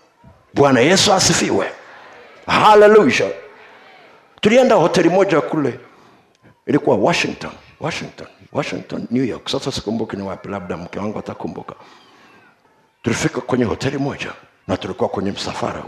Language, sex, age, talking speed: Swahili, male, 50-69, 115 wpm